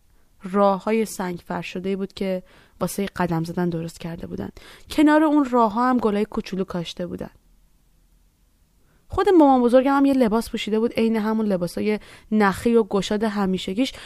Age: 30-49